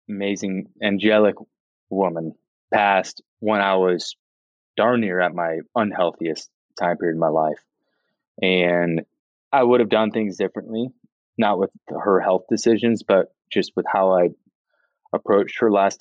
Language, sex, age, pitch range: English, male, 20-39, 90-105 Hz